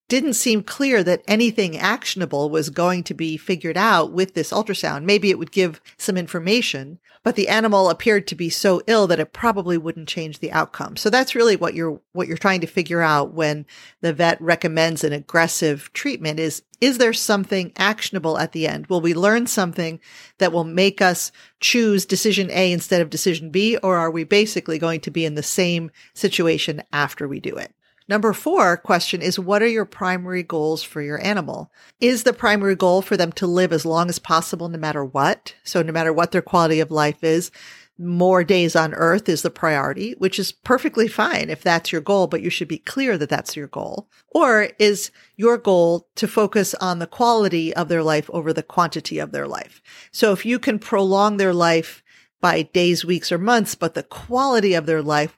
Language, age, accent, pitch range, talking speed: English, 40-59, American, 165-205 Hz, 205 wpm